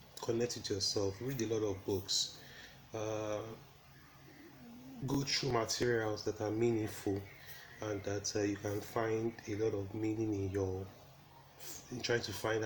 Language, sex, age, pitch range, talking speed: English, male, 30-49, 100-125 Hz, 145 wpm